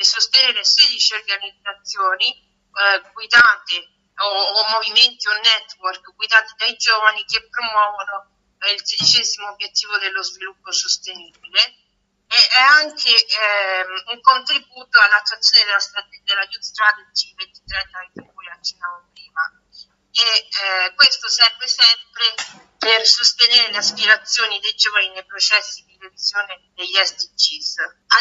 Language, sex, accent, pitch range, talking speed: Italian, female, native, 200-255 Hz, 120 wpm